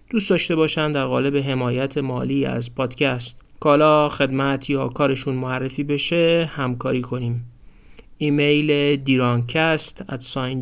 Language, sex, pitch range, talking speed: Persian, male, 130-155 Hz, 120 wpm